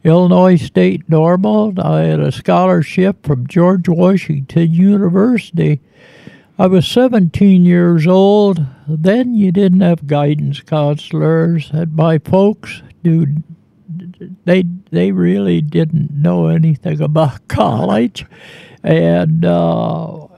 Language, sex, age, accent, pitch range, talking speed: English, male, 60-79, American, 150-190 Hz, 105 wpm